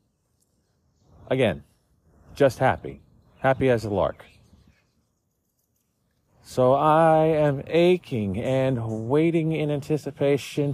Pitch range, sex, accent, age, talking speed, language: 115-170 Hz, male, American, 40-59, 85 wpm, English